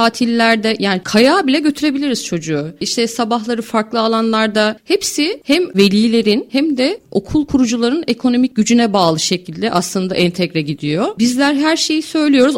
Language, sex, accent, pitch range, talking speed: Turkish, female, native, 200-275 Hz, 135 wpm